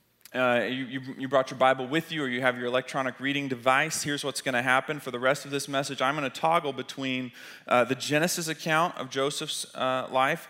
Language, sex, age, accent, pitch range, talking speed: English, male, 30-49, American, 130-155 Hz, 225 wpm